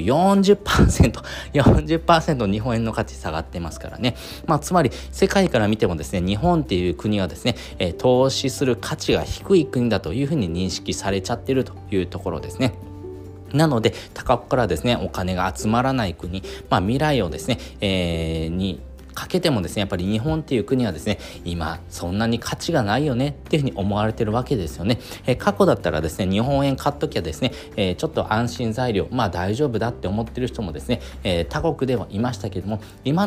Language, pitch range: Japanese, 95-135 Hz